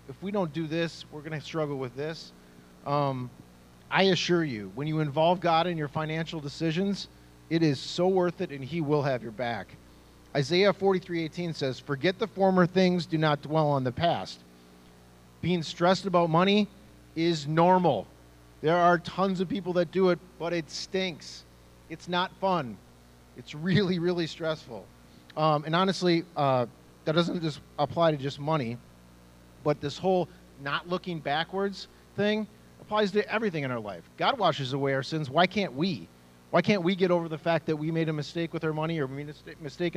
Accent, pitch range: American, 135-175 Hz